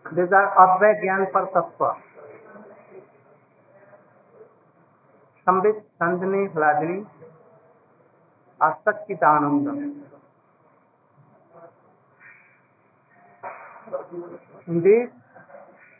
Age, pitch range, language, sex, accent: 60-79, 170-210 Hz, Hindi, male, native